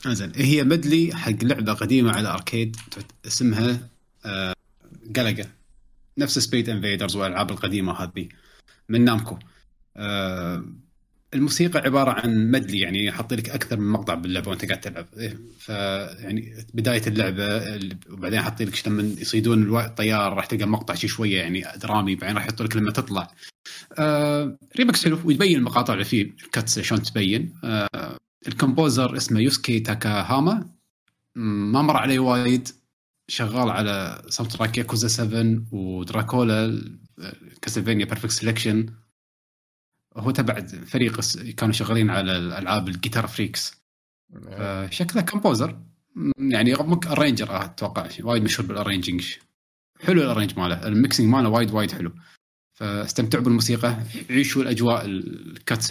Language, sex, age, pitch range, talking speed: Arabic, male, 30-49, 100-125 Hz, 120 wpm